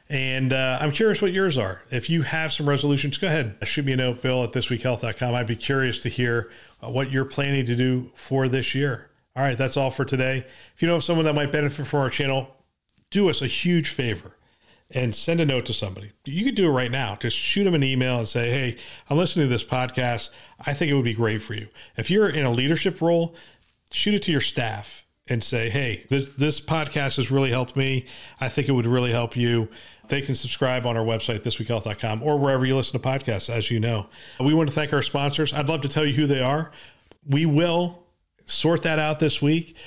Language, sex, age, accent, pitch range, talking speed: English, male, 40-59, American, 120-145 Hz, 230 wpm